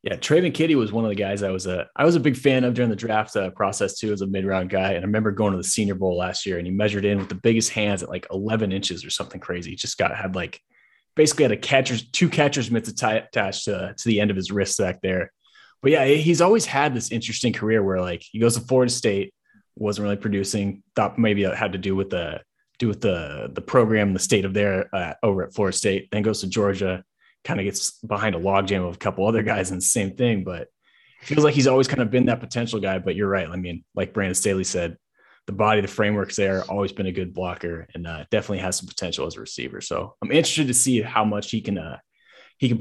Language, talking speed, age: English, 260 wpm, 20-39